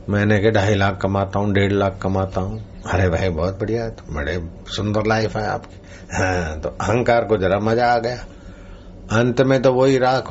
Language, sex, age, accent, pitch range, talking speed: Hindi, male, 60-79, native, 95-110 Hz, 200 wpm